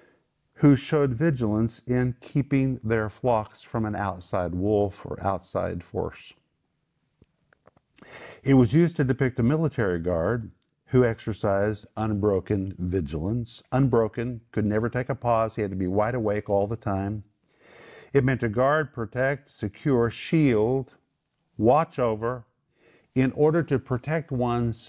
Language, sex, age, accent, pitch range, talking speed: English, male, 50-69, American, 105-130 Hz, 135 wpm